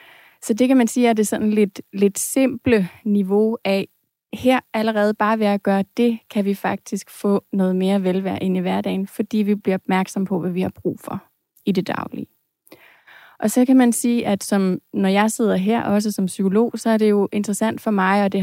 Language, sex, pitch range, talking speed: Danish, female, 195-230 Hz, 220 wpm